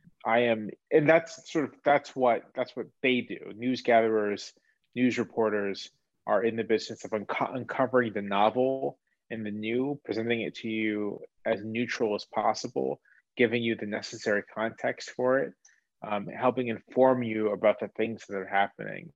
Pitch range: 110-130 Hz